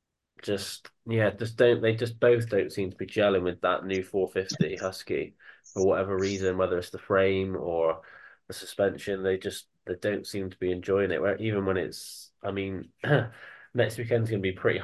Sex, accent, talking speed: male, British, 185 wpm